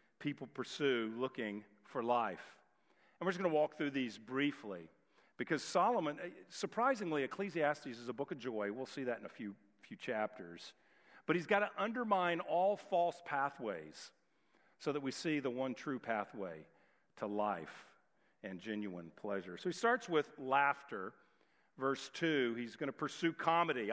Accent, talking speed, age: American, 160 wpm, 50-69